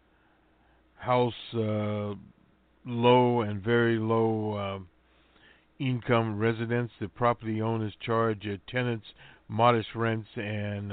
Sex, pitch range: male, 100-115 Hz